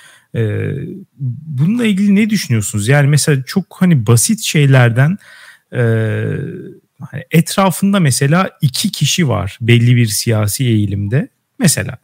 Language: Turkish